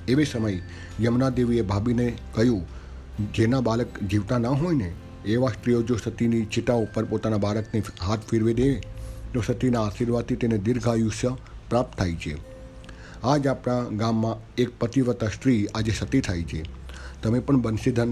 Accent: native